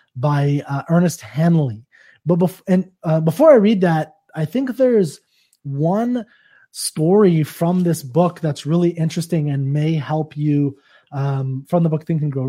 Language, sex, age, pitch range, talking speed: English, male, 20-39, 145-170 Hz, 165 wpm